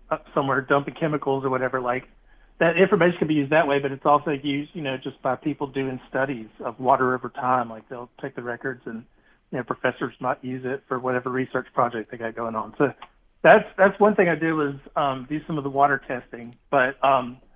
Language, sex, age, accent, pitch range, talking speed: English, male, 40-59, American, 130-150 Hz, 225 wpm